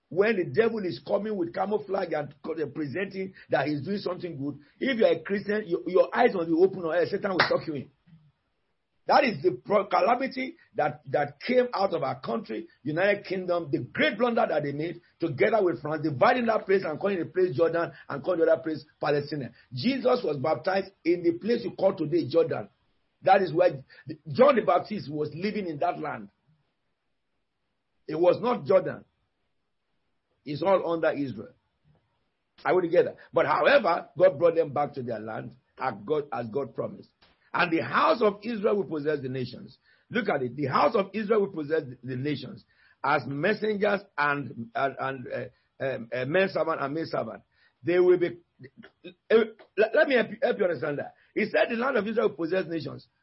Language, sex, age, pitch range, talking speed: English, male, 50-69, 150-210 Hz, 195 wpm